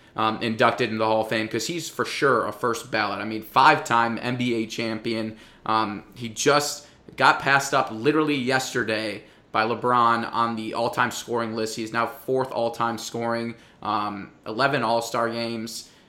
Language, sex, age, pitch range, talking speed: English, male, 20-39, 115-135 Hz, 160 wpm